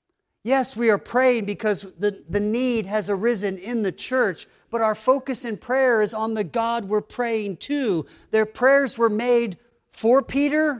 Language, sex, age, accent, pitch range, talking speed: English, male, 40-59, American, 185-240 Hz, 170 wpm